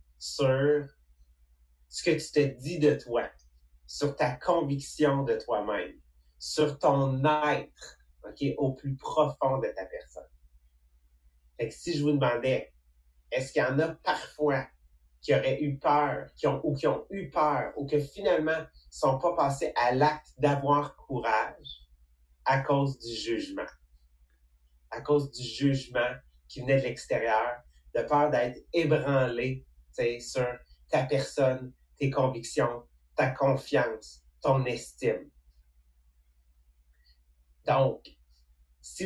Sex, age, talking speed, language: male, 30-49, 120 wpm, English